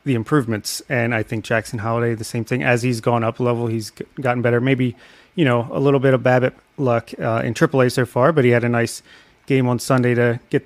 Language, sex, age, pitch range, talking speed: English, male, 30-49, 120-140 Hz, 240 wpm